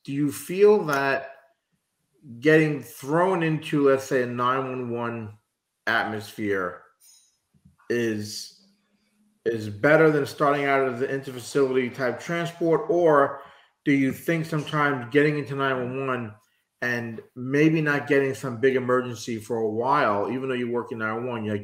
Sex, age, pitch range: male, 40-59, 115-140 Hz